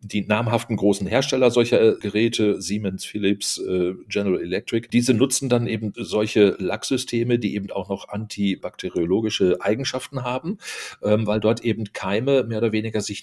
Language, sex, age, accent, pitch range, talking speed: German, male, 40-59, German, 100-115 Hz, 140 wpm